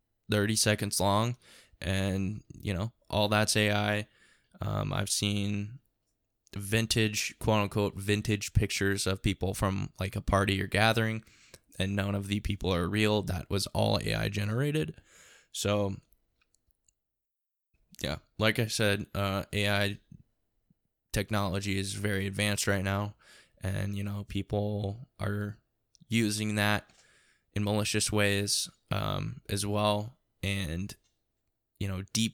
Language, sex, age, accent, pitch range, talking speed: English, male, 10-29, American, 100-110 Hz, 125 wpm